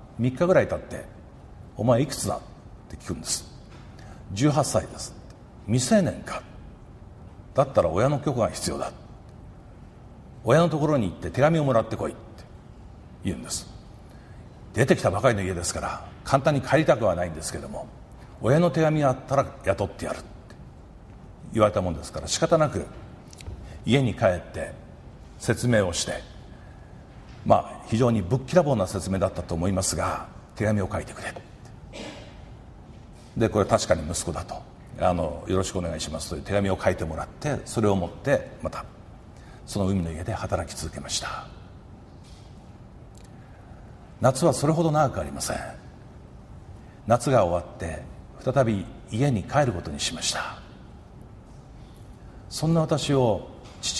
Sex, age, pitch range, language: male, 50-69, 95-140 Hz, Japanese